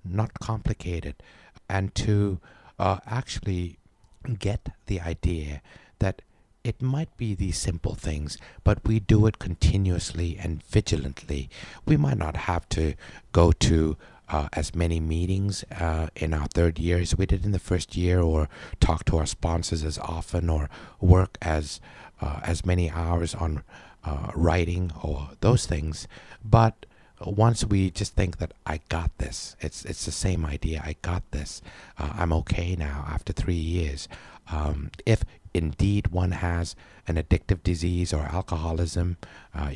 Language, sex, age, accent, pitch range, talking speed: English, male, 60-79, American, 80-100 Hz, 150 wpm